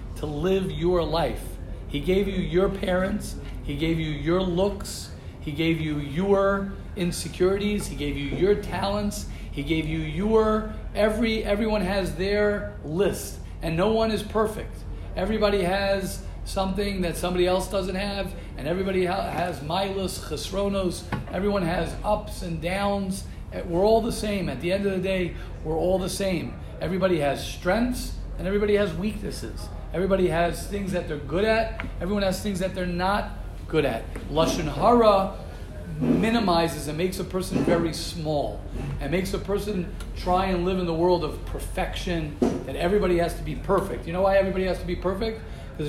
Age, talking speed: 40-59, 165 wpm